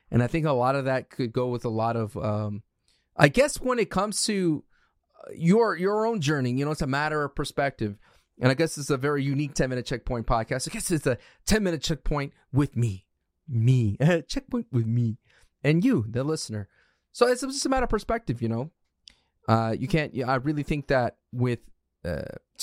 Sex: male